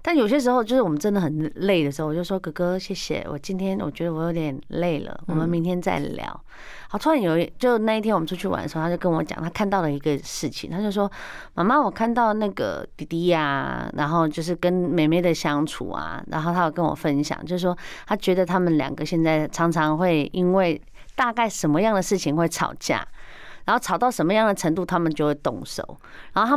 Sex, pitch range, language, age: female, 160-210 Hz, Chinese, 30-49